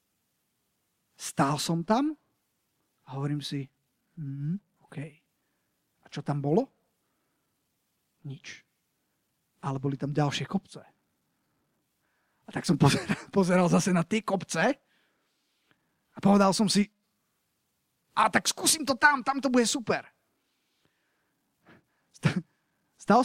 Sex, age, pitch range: male, 30-49, 170-245 Hz